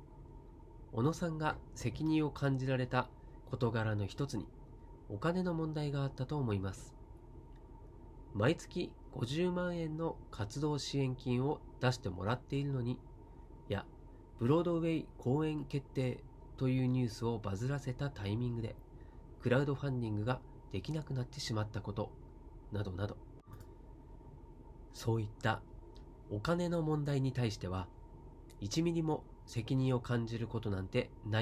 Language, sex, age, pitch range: Japanese, male, 40-59, 105-145 Hz